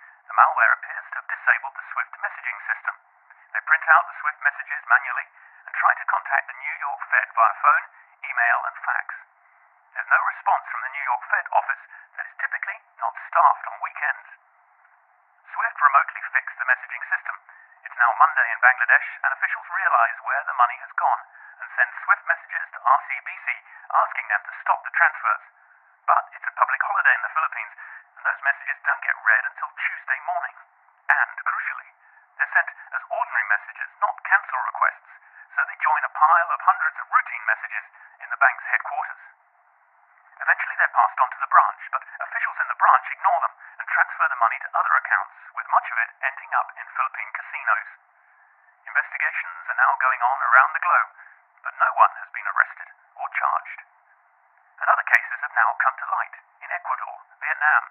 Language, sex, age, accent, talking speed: English, male, 40-59, British, 180 wpm